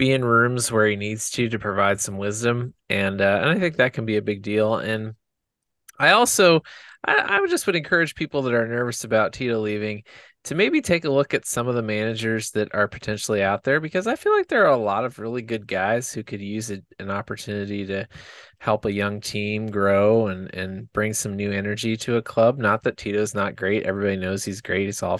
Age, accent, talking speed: 20-39, American, 230 wpm